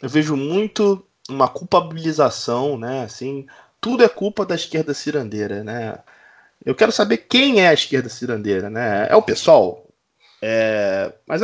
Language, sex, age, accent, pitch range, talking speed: Portuguese, male, 20-39, Brazilian, 115-185 Hz, 145 wpm